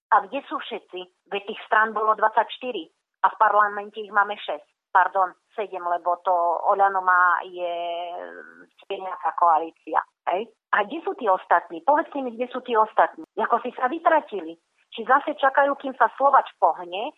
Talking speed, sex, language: 160 wpm, female, Slovak